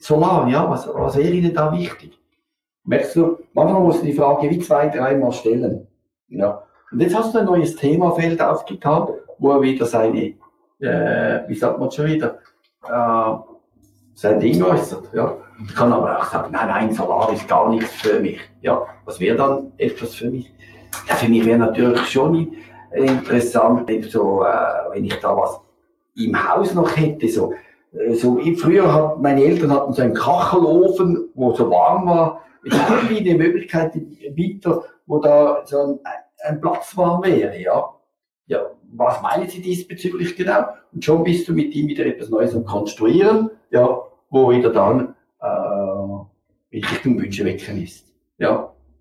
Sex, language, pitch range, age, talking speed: male, German, 125-180 Hz, 50-69, 170 wpm